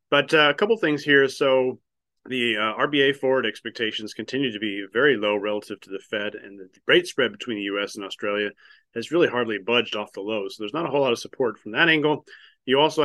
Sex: male